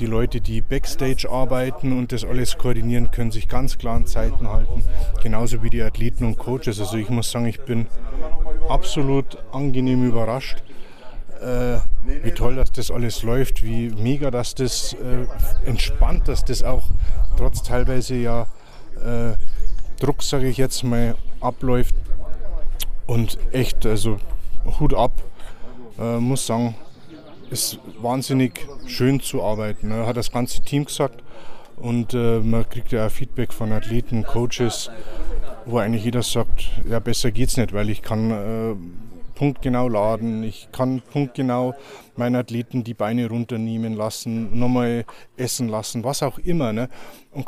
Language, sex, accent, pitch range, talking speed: German, male, German, 110-125 Hz, 150 wpm